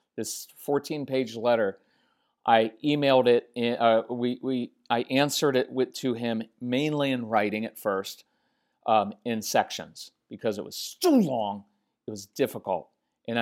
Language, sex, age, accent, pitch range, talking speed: English, male, 40-59, American, 120-170 Hz, 145 wpm